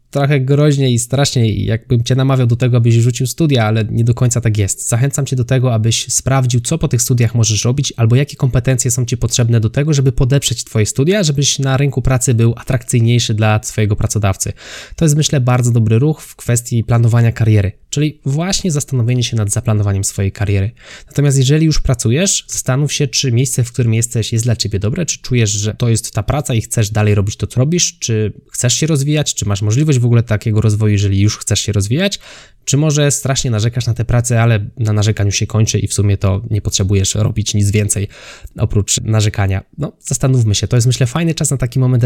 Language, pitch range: Polish, 110-135 Hz